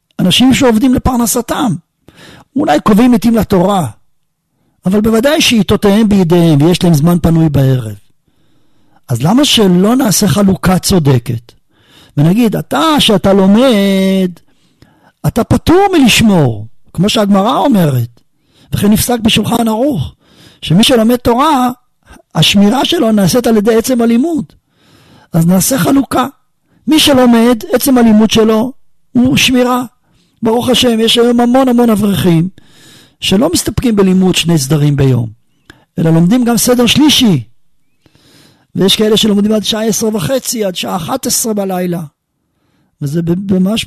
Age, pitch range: 50-69, 160-235 Hz